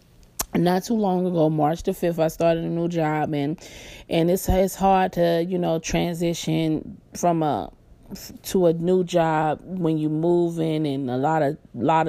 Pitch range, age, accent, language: 155-185 Hz, 20-39, American, English